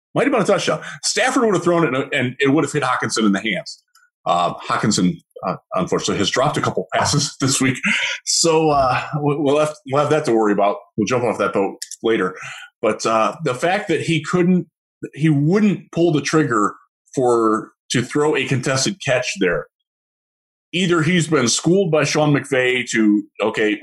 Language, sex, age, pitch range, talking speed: English, male, 20-39, 115-165 Hz, 185 wpm